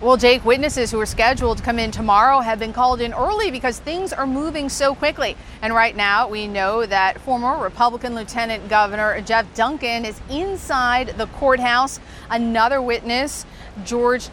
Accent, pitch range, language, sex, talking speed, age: American, 220-255 Hz, English, female, 170 wpm, 40-59